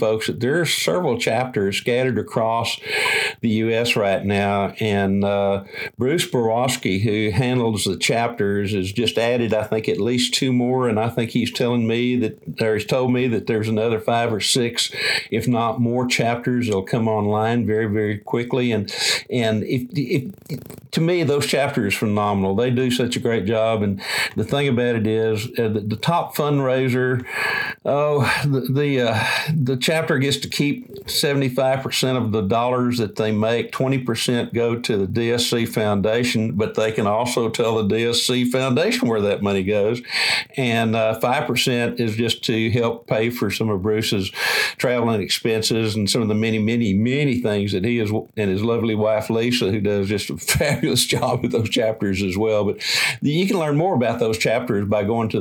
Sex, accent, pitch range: male, American, 110-125 Hz